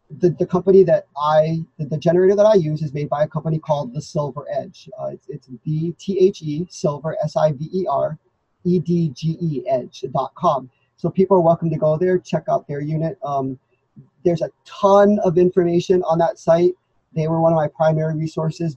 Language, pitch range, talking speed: English, 145-180 Hz, 180 wpm